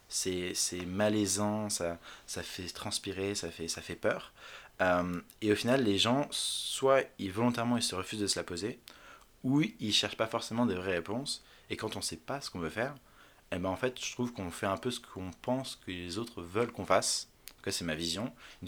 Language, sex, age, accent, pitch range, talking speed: French, male, 20-39, French, 90-110 Hz, 220 wpm